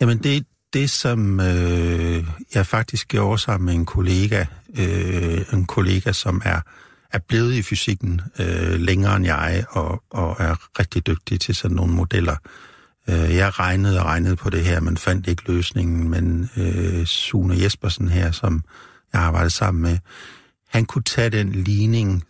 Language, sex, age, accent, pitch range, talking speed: Danish, male, 60-79, native, 85-105 Hz, 165 wpm